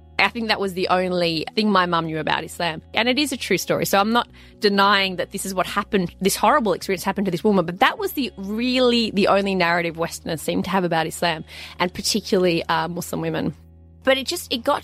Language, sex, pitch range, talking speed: English, female, 170-220 Hz, 235 wpm